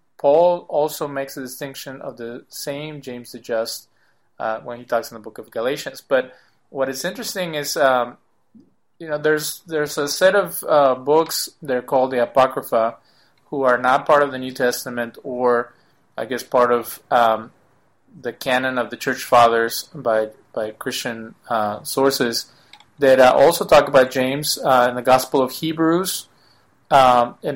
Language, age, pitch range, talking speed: English, 30-49, 120-145 Hz, 170 wpm